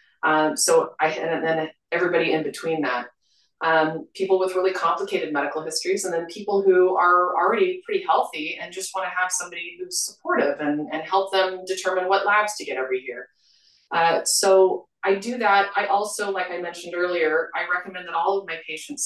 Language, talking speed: English, 190 wpm